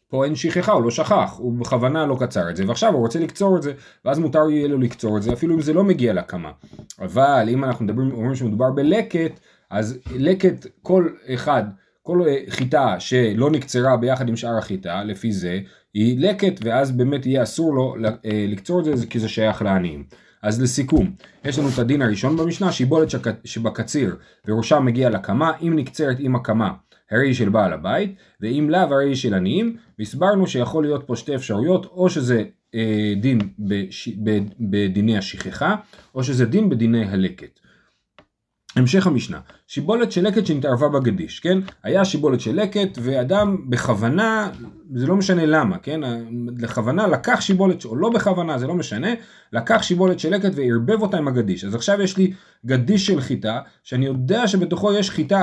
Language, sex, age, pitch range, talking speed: Hebrew, male, 30-49, 120-180 Hz, 170 wpm